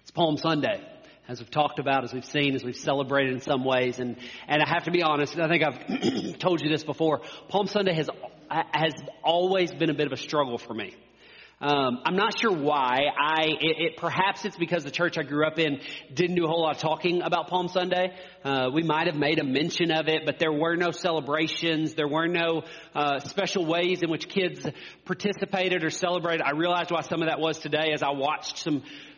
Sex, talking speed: male, 220 wpm